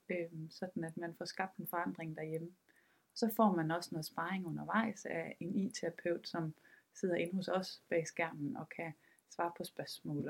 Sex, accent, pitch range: female, native, 170-215 Hz